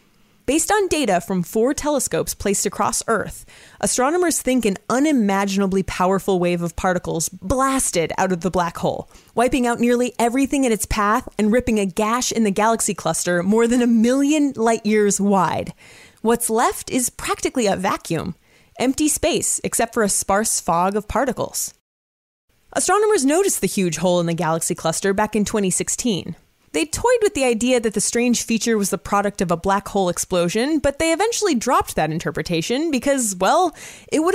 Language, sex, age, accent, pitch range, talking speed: English, female, 30-49, American, 200-295 Hz, 175 wpm